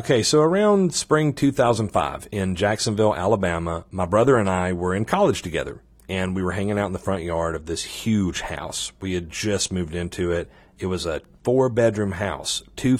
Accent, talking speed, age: American, 190 wpm, 40-59